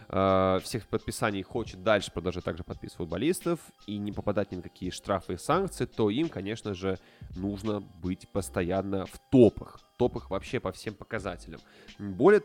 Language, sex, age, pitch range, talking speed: Russian, male, 20-39, 95-120 Hz, 150 wpm